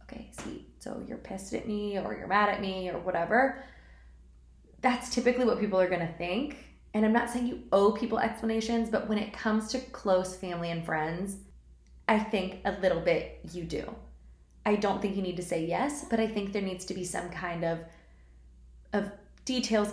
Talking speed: 200 wpm